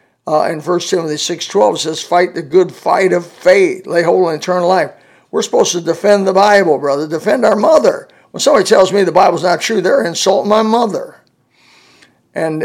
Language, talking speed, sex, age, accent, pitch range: English, 195 wpm, male, 50-69, American, 160-190 Hz